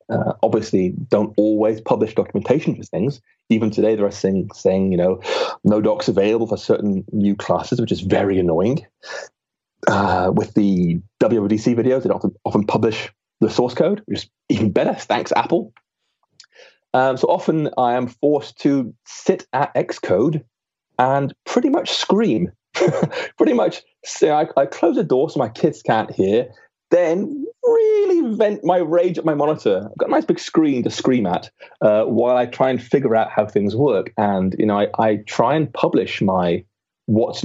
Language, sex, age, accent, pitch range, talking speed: English, male, 30-49, British, 105-155 Hz, 175 wpm